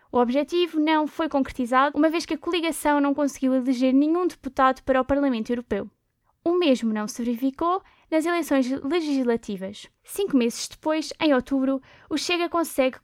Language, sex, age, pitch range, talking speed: Portuguese, female, 10-29, 255-310 Hz, 160 wpm